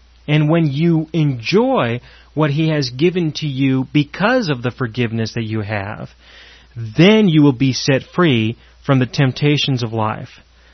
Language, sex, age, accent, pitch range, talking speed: English, male, 30-49, American, 115-145 Hz, 155 wpm